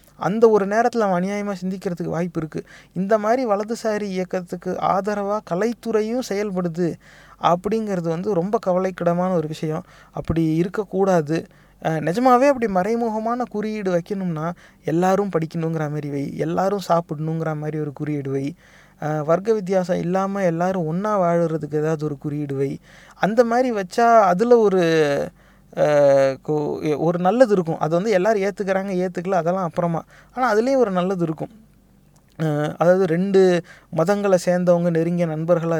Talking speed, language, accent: 120 wpm, Tamil, native